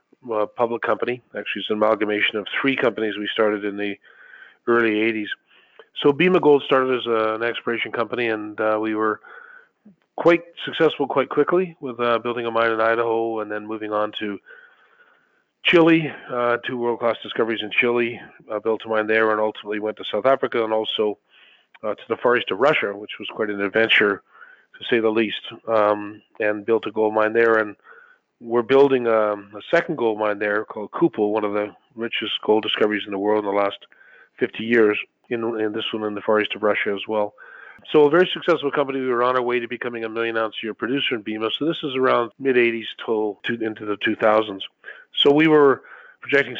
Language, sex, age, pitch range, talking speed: English, male, 40-59, 105-125 Hz, 205 wpm